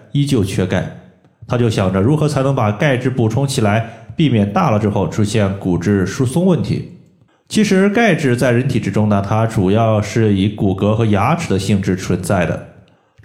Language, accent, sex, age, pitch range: Chinese, native, male, 20-39, 100-135 Hz